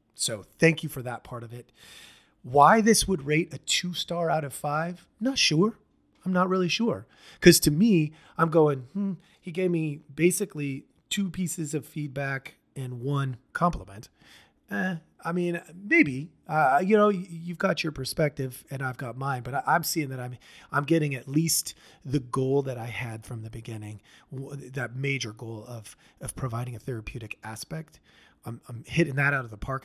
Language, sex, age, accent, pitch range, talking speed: English, male, 30-49, American, 125-160 Hz, 180 wpm